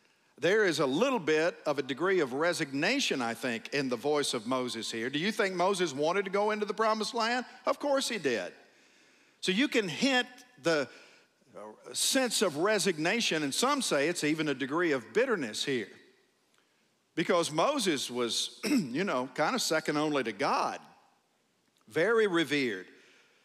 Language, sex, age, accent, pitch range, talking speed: English, male, 50-69, American, 145-225 Hz, 165 wpm